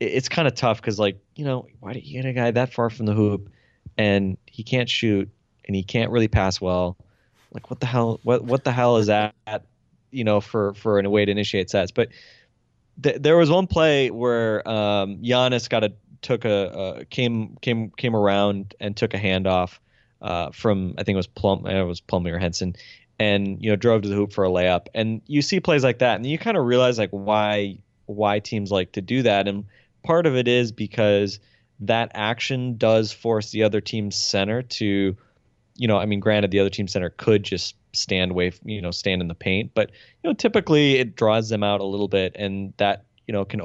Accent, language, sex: American, English, male